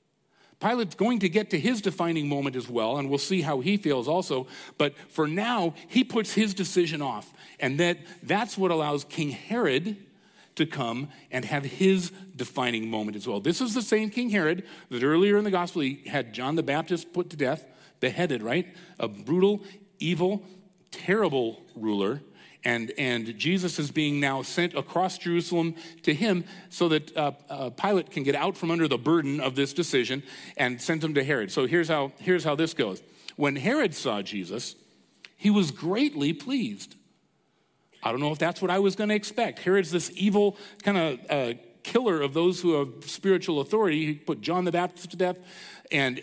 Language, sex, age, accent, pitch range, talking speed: English, male, 40-59, American, 145-195 Hz, 185 wpm